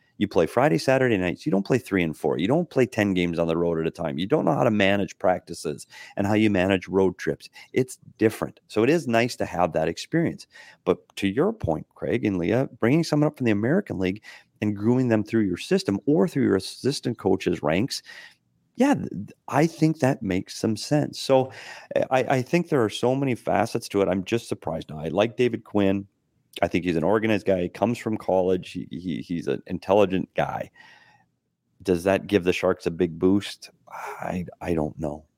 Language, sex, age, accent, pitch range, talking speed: English, male, 40-59, American, 90-120 Hz, 210 wpm